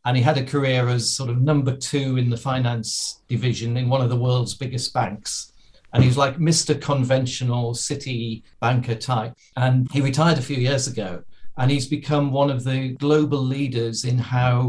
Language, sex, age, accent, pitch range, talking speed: English, male, 40-59, British, 120-150 Hz, 190 wpm